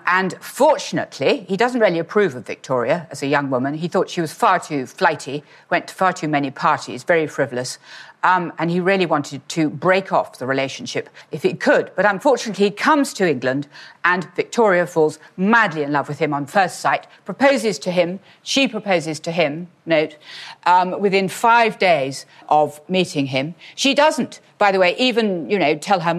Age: 50-69